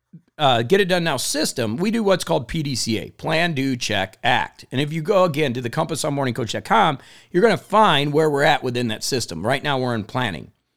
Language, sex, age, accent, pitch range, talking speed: English, male, 50-69, American, 130-200 Hz, 225 wpm